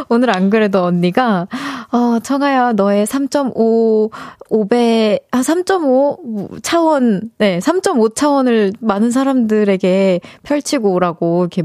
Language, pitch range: Korean, 185-260 Hz